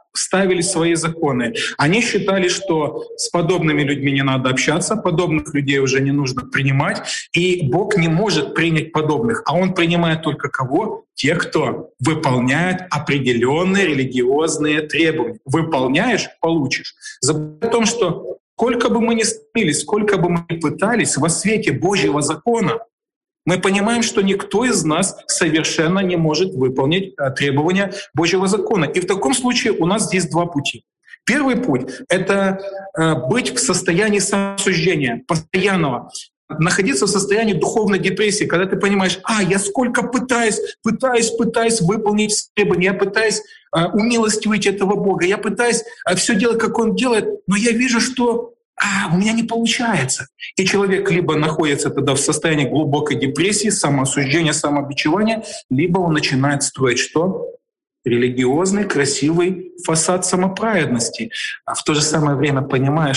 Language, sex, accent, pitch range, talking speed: Ukrainian, male, native, 150-210 Hz, 140 wpm